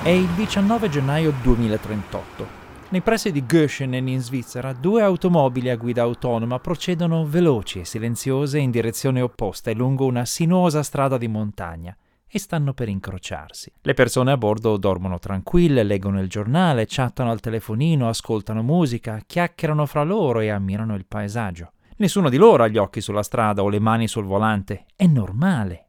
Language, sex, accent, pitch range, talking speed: Italian, male, native, 110-155 Hz, 160 wpm